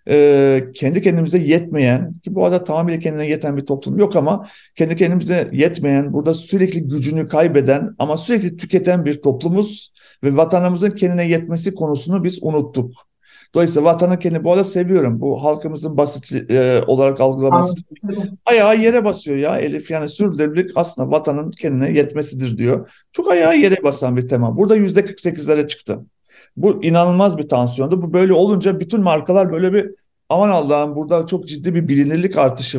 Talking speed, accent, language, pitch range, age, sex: 155 wpm, native, Turkish, 145-185 Hz, 50-69, male